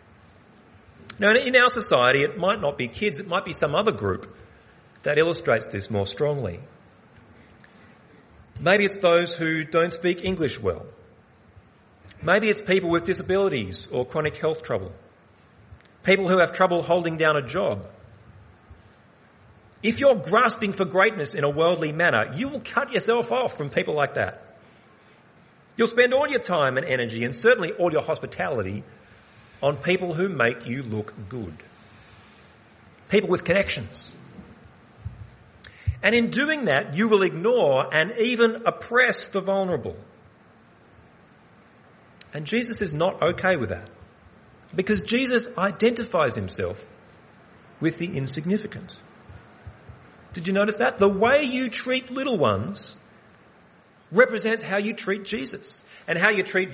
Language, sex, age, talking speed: English, male, 30-49, 135 wpm